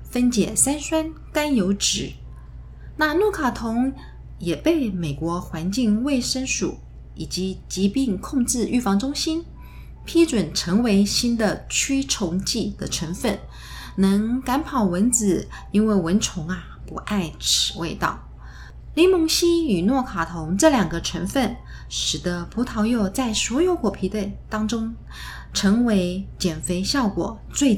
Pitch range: 175-250 Hz